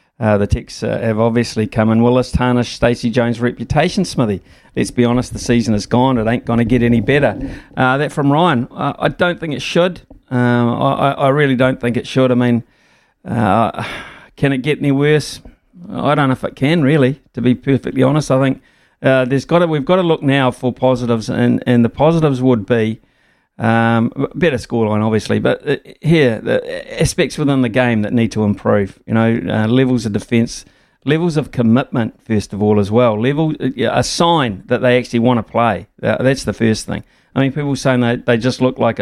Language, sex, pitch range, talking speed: English, male, 115-135 Hz, 210 wpm